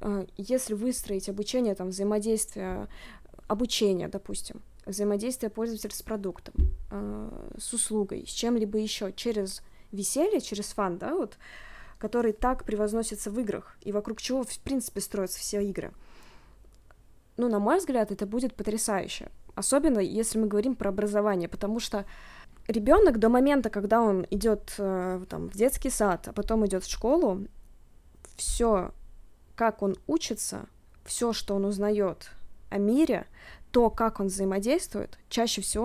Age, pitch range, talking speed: 20-39, 200-235 Hz, 135 wpm